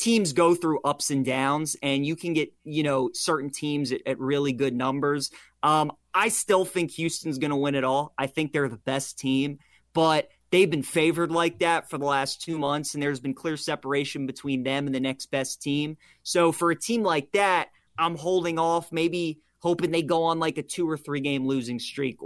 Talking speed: 215 wpm